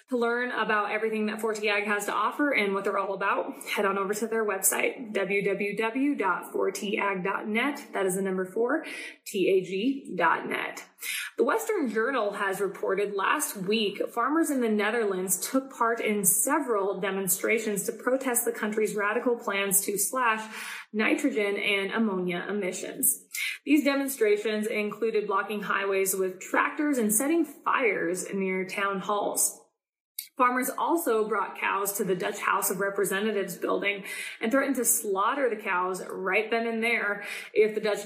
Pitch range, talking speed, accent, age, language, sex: 195-235 Hz, 150 wpm, American, 20-39, English, female